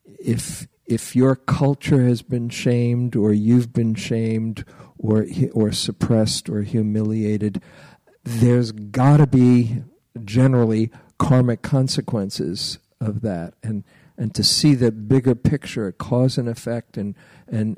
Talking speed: 125 wpm